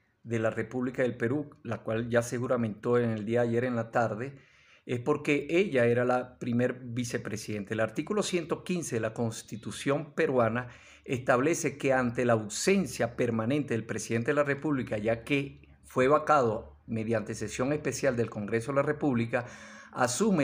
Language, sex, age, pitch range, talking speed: Spanish, male, 50-69, 120-150 Hz, 160 wpm